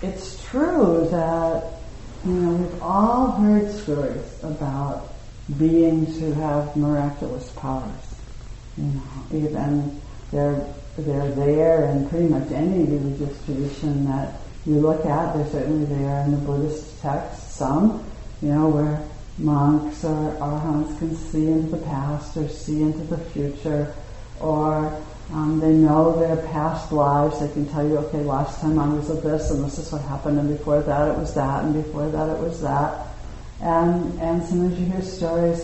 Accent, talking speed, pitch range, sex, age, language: American, 160 wpm, 140-160 Hz, female, 60-79, English